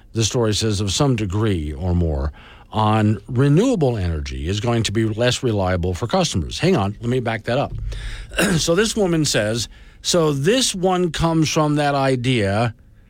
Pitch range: 100-130 Hz